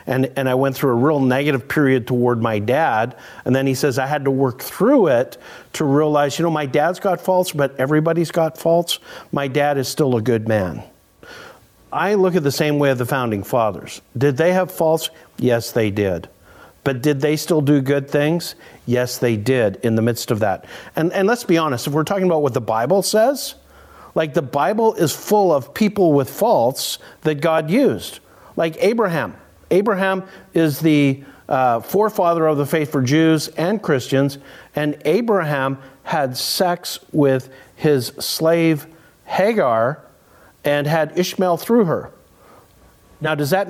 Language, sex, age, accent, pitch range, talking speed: English, male, 50-69, American, 135-175 Hz, 175 wpm